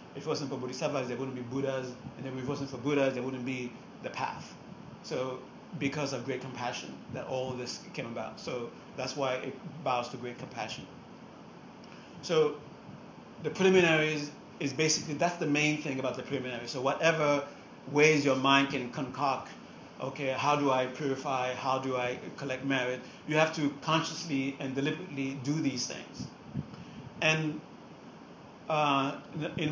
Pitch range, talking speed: 130-150 Hz, 160 wpm